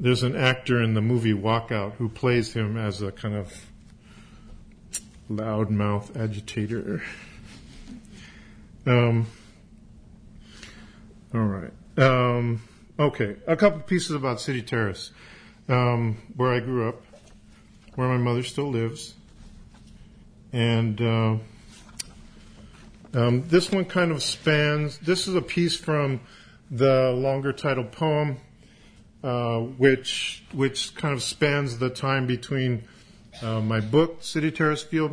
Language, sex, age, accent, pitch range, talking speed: English, male, 50-69, American, 115-145 Hz, 120 wpm